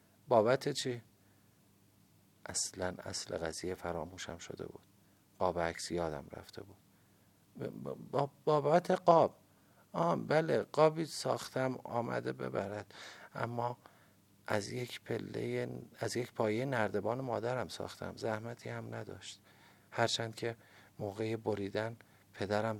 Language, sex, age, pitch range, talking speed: Persian, male, 50-69, 95-120 Hz, 90 wpm